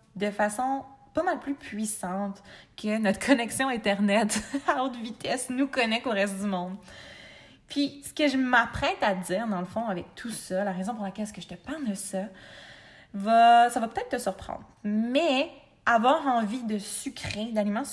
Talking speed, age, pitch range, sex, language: 185 wpm, 20-39, 205-270 Hz, female, French